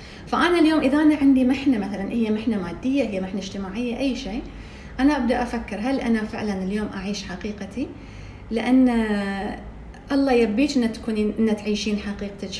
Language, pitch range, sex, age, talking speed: English, 210-265 Hz, female, 30-49, 150 wpm